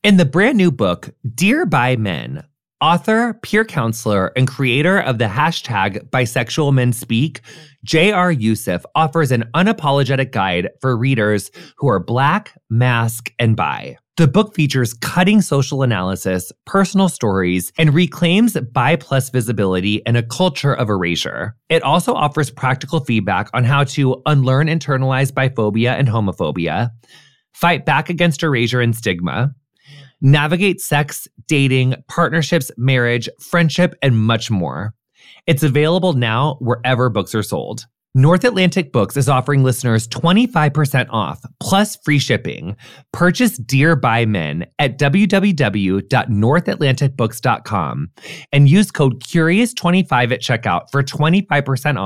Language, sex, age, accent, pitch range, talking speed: English, male, 20-39, American, 115-160 Hz, 125 wpm